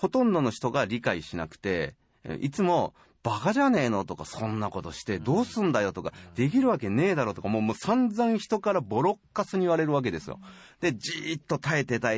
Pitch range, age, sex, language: 90-150 Hz, 30-49, male, Japanese